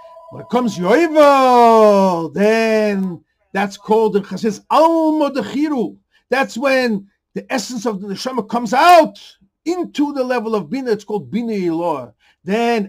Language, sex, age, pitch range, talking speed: English, male, 50-69, 185-245 Hz, 135 wpm